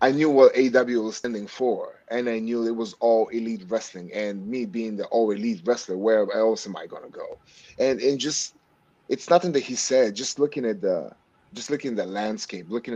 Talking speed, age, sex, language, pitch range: 215 wpm, 30-49, male, English, 110-125 Hz